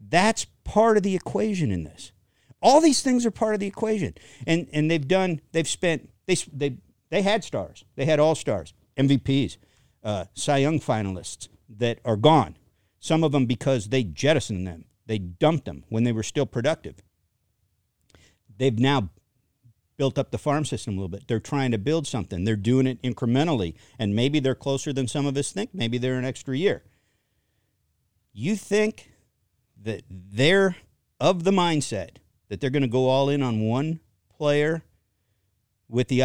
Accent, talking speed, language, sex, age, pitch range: American, 170 wpm, English, male, 50-69, 110-155 Hz